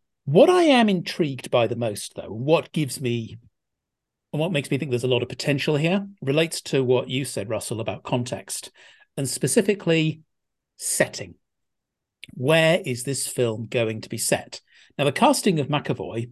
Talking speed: 170 wpm